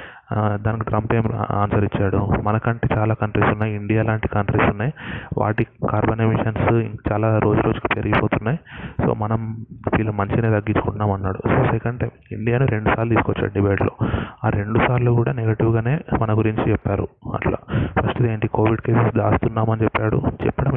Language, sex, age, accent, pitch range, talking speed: Telugu, male, 20-39, native, 105-120 Hz, 145 wpm